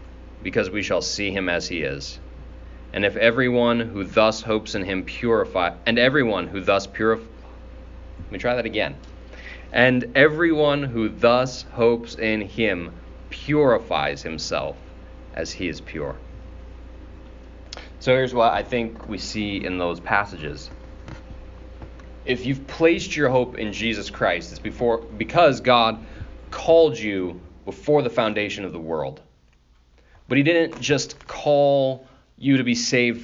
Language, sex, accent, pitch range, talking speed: English, male, American, 85-130 Hz, 145 wpm